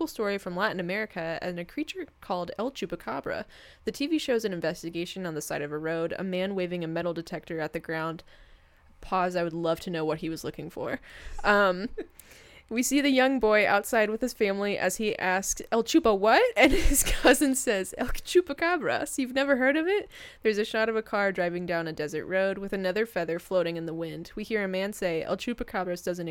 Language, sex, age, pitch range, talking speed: English, female, 10-29, 170-220 Hz, 215 wpm